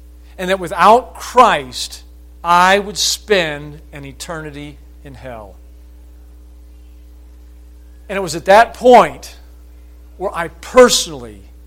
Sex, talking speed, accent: male, 105 wpm, American